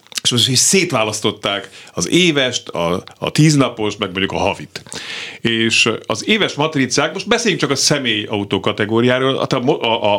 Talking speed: 140 wpm